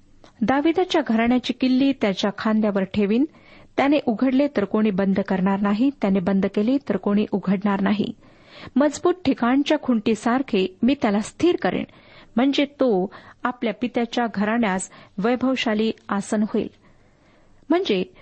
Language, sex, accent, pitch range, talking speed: Marathi, female, native, 205-275 Hz, 115 wpm